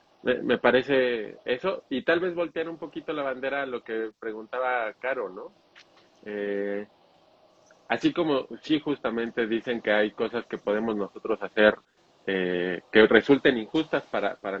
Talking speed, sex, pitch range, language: 150 wpm, male, 110-145 Hz, Spanish